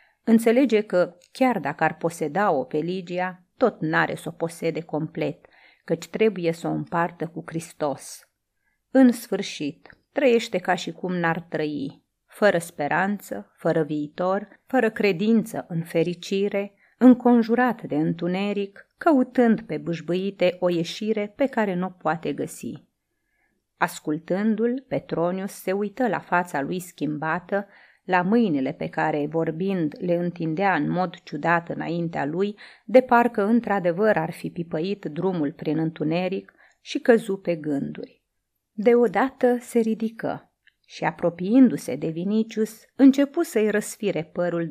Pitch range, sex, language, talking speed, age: 160-215 Hz, female, Romanian, 130 wpm, 30-49